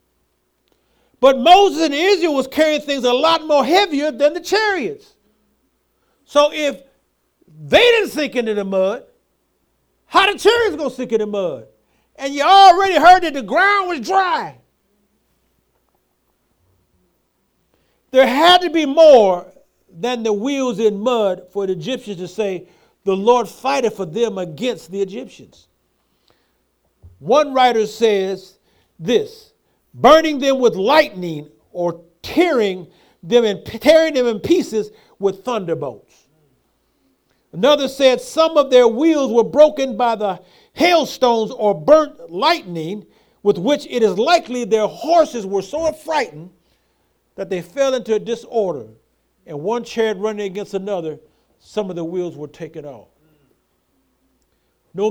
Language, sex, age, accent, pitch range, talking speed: English, male, 50-69, American, 195-300 Hz, 135 wpm